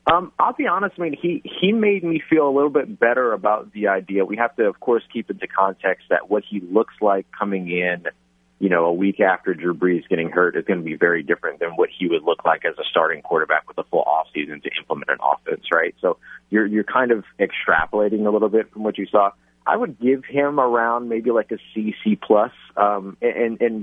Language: English